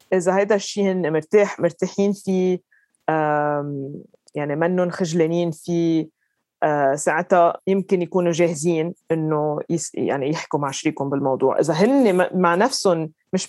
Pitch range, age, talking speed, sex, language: 165-205 Hz, 20-39, 120 wpm, female, Arabic